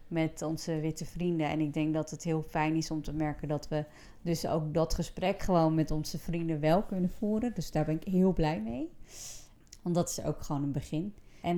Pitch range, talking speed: 160-185 Hz, 225 wpm